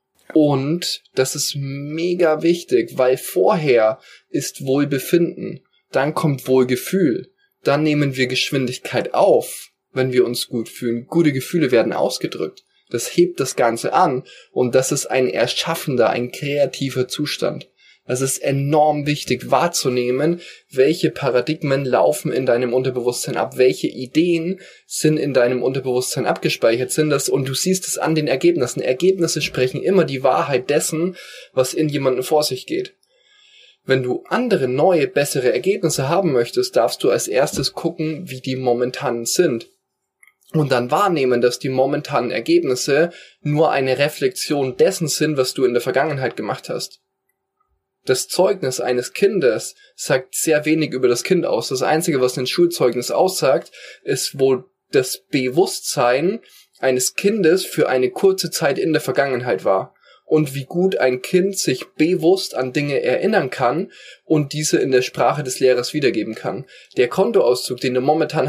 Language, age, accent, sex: German, 20-39, German, male